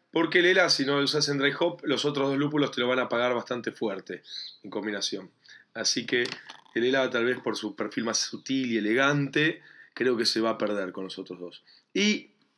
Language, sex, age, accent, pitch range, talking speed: Spanish, male, 20-39, Argentinian, 110-140 Hz, 225 wpm